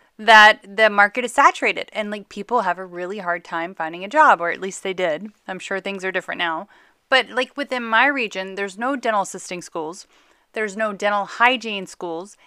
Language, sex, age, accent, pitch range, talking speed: English, female, 30-49, American, 200-255 Hz, 200 wpm